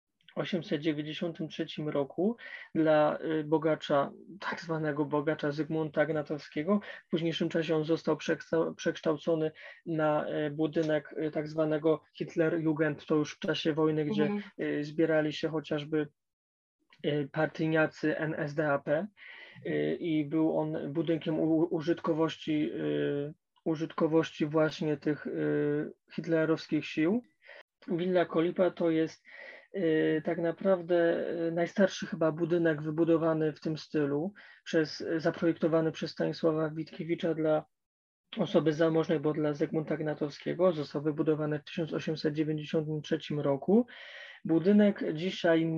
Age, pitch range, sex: 20-39, 155-170 Hz, male